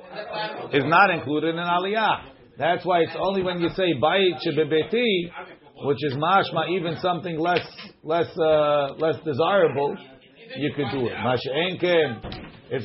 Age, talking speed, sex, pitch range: 50-69, 125 wpm, male, 145-200 Hz